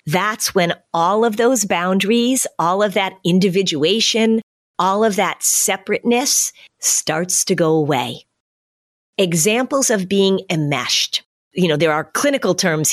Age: 40-59